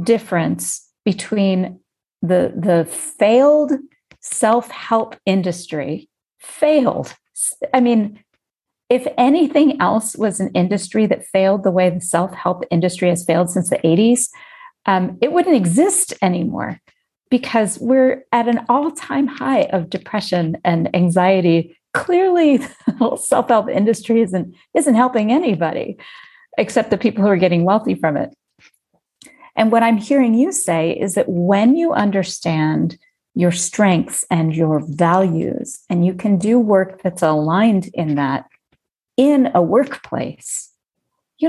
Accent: American